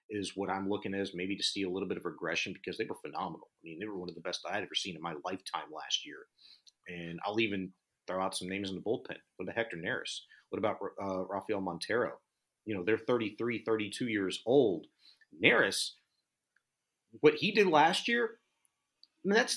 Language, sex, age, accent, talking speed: English, male, 30-49, American, 215 wpm